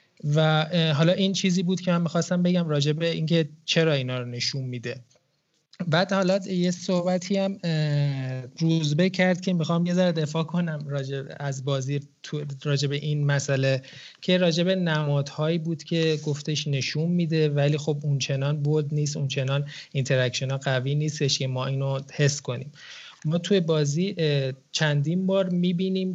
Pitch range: 135-165 Hz